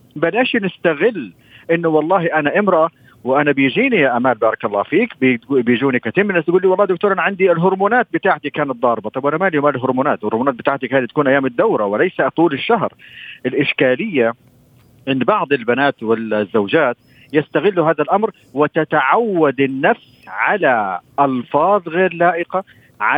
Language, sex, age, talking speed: Arabic, male, 50-69, 140 wpm